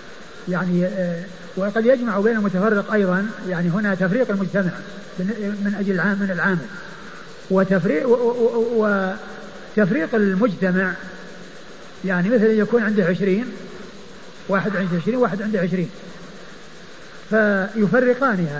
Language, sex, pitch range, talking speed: Arabic, male, 190-235 Hz, 95 wpm